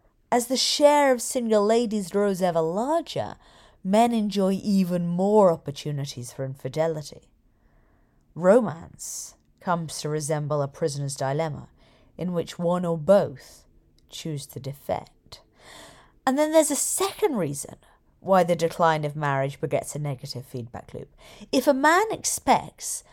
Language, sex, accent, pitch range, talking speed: English, female, British, 155-240 Hz, 130 wpm